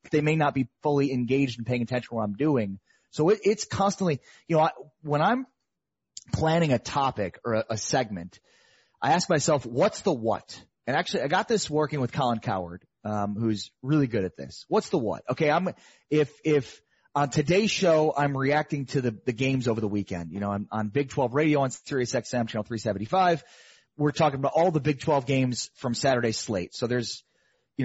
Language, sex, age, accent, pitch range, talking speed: English, male, 30-49, American, 125-165 Hz, 200 wpm